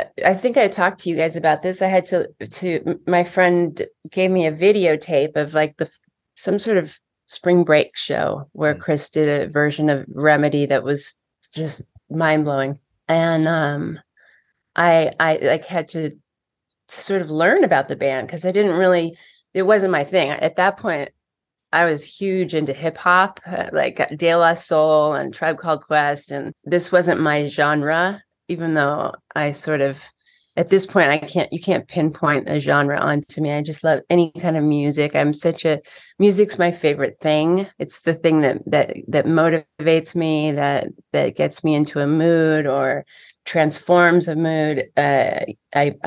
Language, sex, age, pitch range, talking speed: English, female, 30-49, 150-175 Hz, 170 wpm